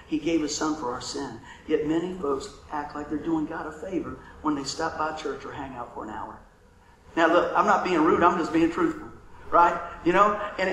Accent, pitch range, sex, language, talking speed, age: American, 200-245 Hz, male, English, 235 wpm, 50-69